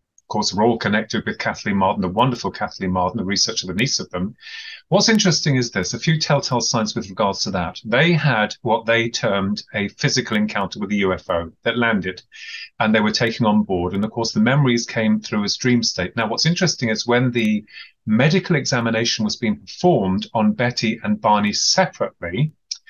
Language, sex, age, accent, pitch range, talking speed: English, male, 30-49, British, 115-150 Hz, 195 wpm